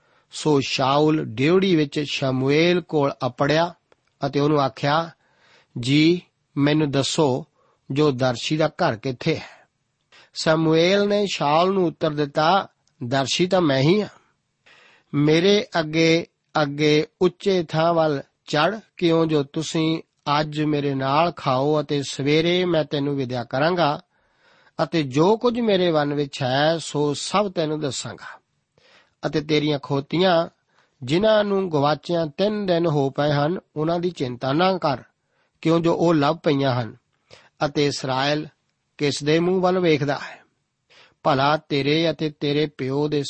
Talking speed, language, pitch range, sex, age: 120 wpm, Punjabi, 145-165 Hz, male, 50-69